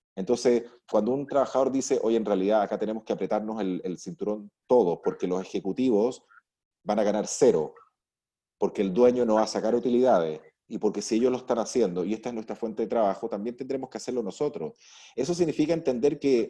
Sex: male